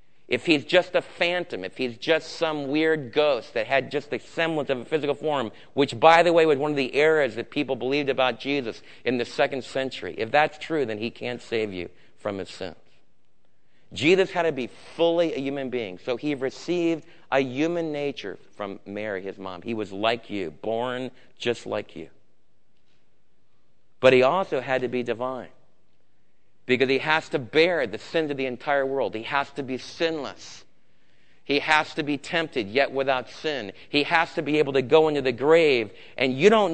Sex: male